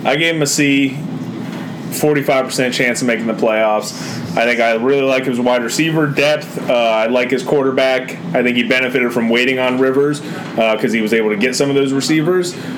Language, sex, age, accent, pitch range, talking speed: English, male, 30-49, American, 115-145 Hz, 205 wpm